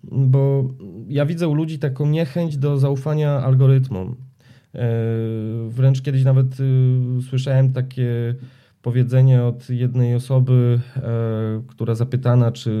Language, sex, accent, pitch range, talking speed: Polish, male, native, 120-140 Hz, 105 wpm